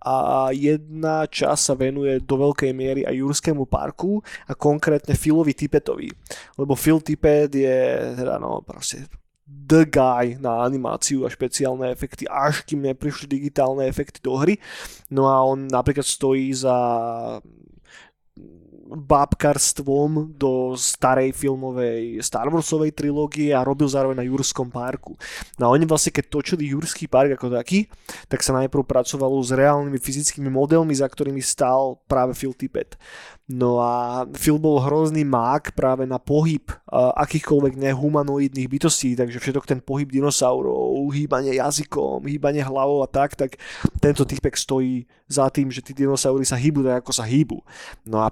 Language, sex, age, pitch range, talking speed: Slovak, male, 20-39, 130-150 Hz, 145 wpm